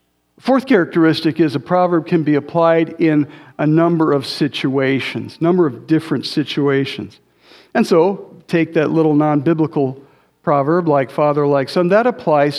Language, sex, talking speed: English, male, 155 wpm